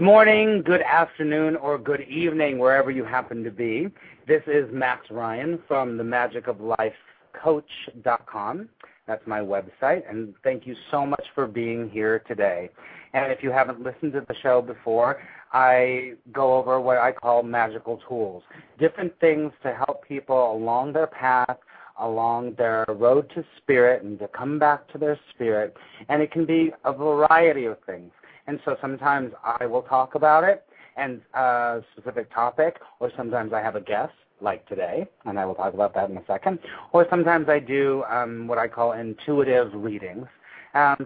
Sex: male